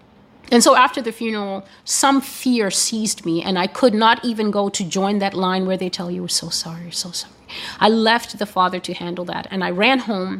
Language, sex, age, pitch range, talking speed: English, female, 30-49, 185-245 Hz, 235 wpm